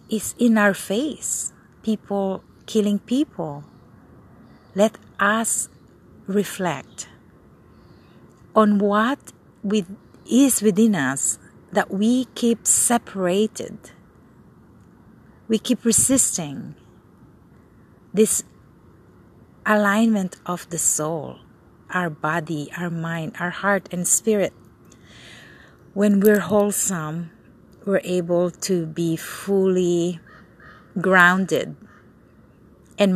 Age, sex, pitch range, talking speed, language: 50-69, female, 165-210 Hz, 85 wpm, English